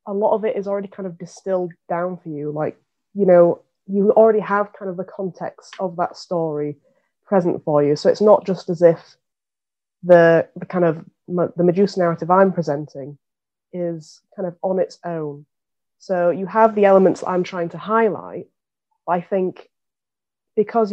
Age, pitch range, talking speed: 20-39, 170-195 Hz, 175 wpm